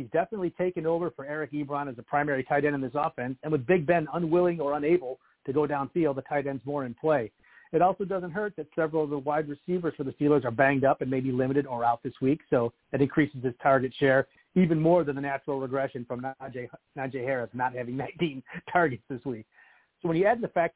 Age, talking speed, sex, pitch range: 40-59, 235 wpm, male, 135-170 Hz